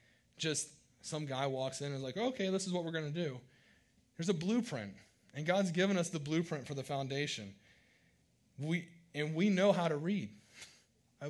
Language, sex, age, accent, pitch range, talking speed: English, male, 30-49, American, 120-165 Hz, 185 wpm